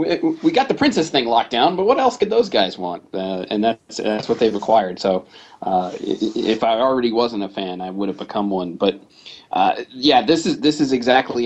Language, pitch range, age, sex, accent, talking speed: English, 100-125 Hz, 30-49, male, American, 220 wpm